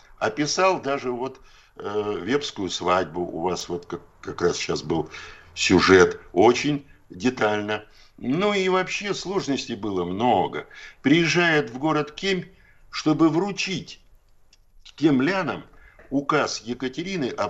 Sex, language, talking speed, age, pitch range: male, Russian, 115 wpm, 60-79, 110-185 Hz